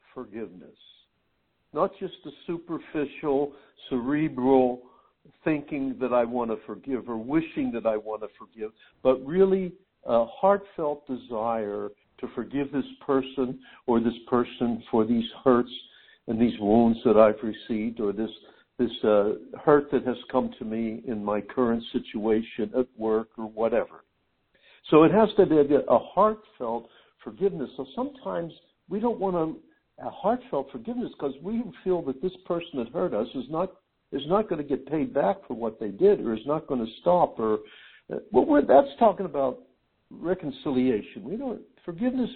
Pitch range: 115-180 Hz